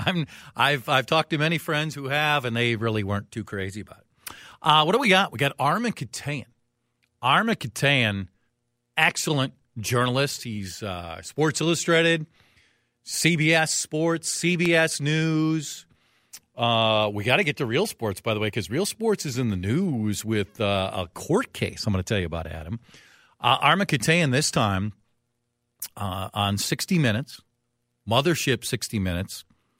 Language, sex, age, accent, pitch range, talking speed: English, male, 40-59, American, 100-135 Hz, 160 wpm